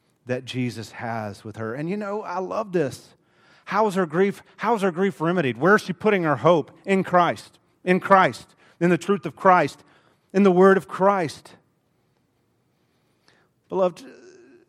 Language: English